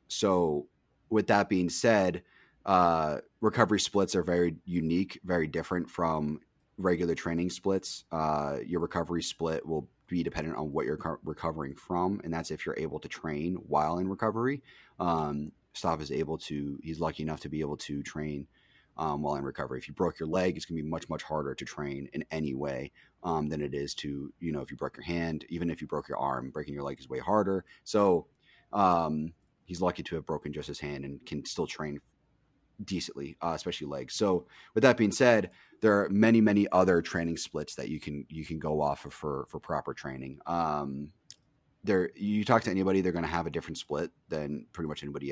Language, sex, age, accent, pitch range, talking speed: English, male, 30-49, American, 75-90 Hz, 205 wpm